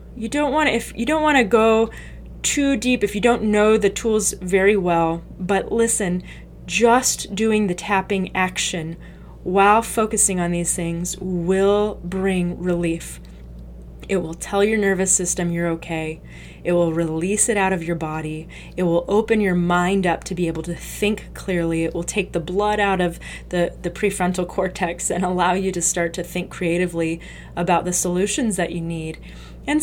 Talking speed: 170 wpm